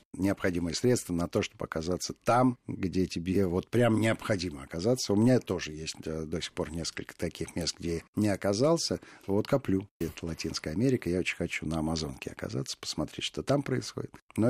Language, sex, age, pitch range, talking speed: Russian, male, 50-69, 85-115 Hz, 180 wpm